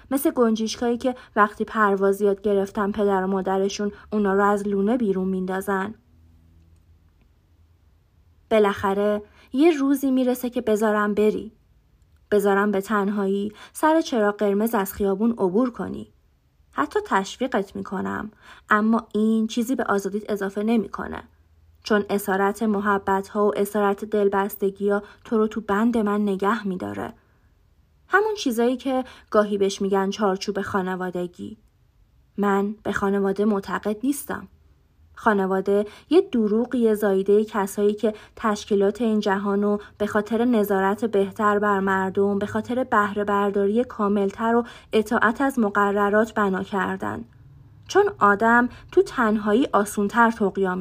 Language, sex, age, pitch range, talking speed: Persian, female, 20-39, 195-220 Hz, 120 wpm